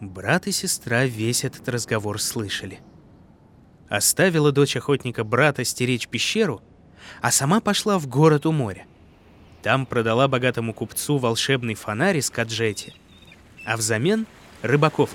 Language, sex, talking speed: Russian, male, 125 wpm